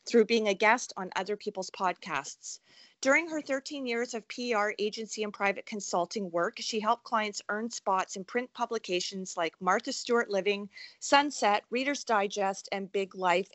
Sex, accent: female, American